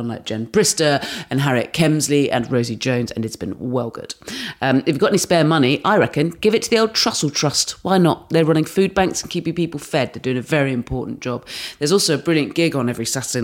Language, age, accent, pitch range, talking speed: English, 30-49, British, 120-150 Hz, 240 wpm